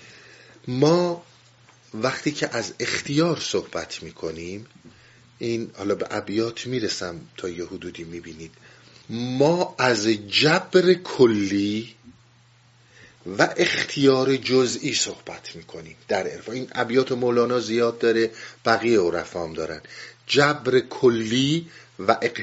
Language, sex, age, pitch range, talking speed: Persian, male, 50-69, 115-140 Hz, 100 wpm